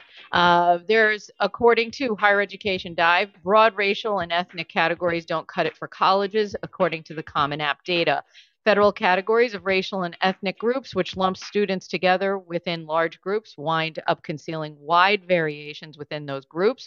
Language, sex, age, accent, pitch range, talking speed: English, female, 40-59, American, 150-185 Hz, 160 wpm